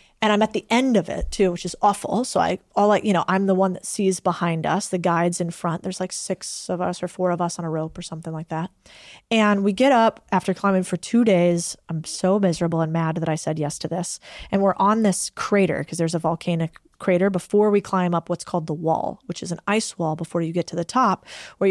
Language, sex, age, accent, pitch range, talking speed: English, female, 20-39, American, 170-205 Hz, 260 wpm